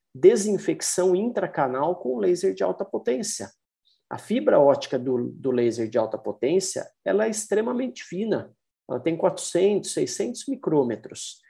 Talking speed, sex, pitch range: 130 wpm, male, 125-205 Hz